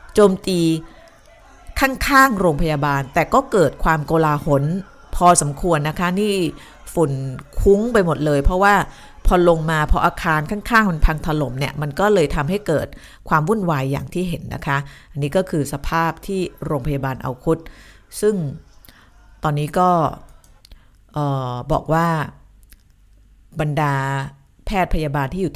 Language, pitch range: Thai, 135-175 Hz